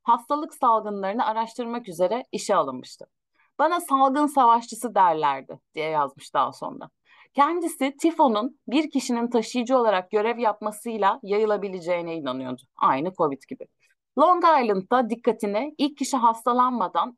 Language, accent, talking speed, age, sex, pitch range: Turkish, native, 115 wpm, 30-49, female, 190-265 Hz